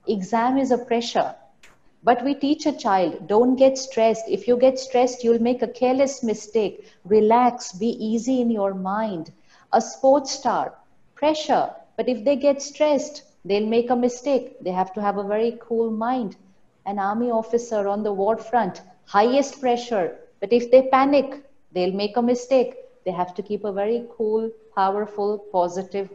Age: 50-69